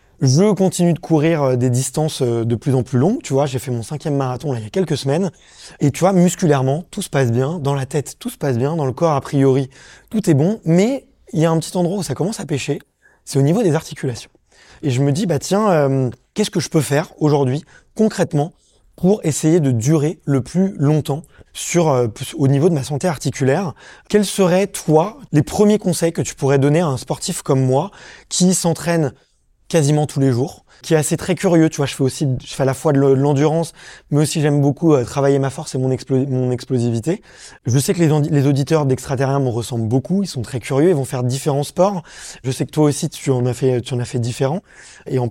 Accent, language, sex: French, French, male